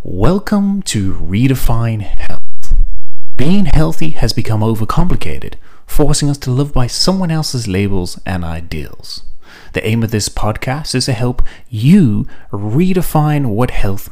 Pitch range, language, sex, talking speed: 95-135 Hz, English, male, 130 wpm